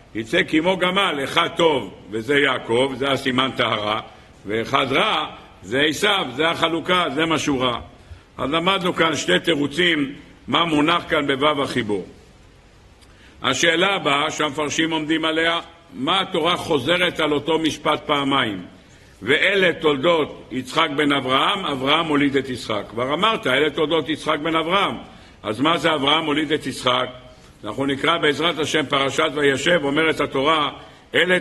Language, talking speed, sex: Hebrew, 145 wpm, male